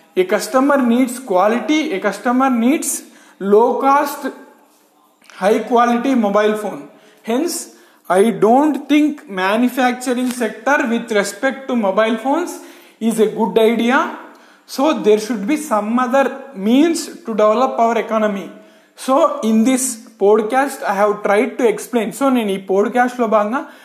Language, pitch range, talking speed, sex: Telugu, 215-265 Hz, 140 wpm, male